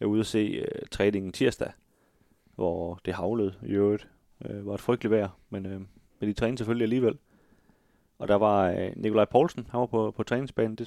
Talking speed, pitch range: 205 wpm, 95-115 Hz